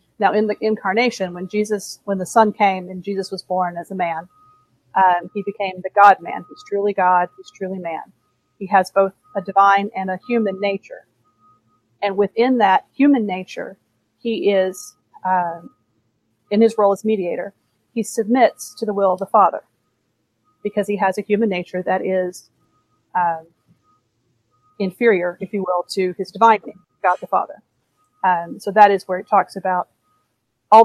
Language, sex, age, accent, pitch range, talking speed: English, female, 40-59, American, 175-205 Hz, 170 wpm